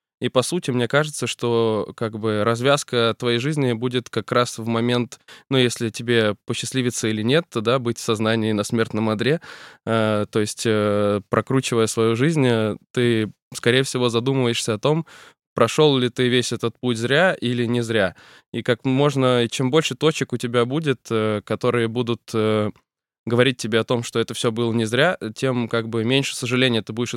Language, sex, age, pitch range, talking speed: Russian, male, 20-39, 110-130 Hz, 180 wpm